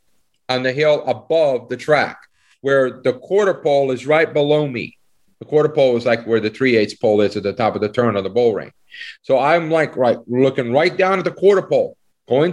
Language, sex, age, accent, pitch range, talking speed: English, male, 40-59, American, 130-165 Hz, 220 wpm